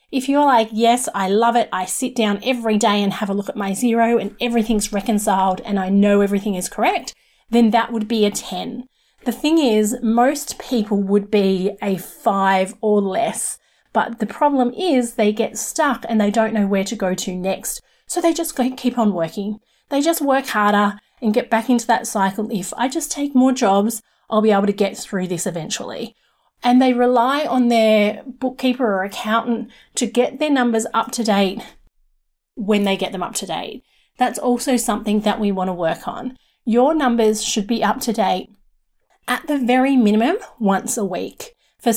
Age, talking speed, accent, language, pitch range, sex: 30-49, 195 wpm, Australian, English, 205-250 Hz, female